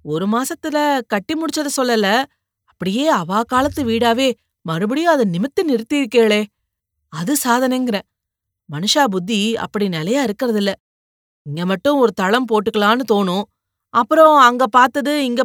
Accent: native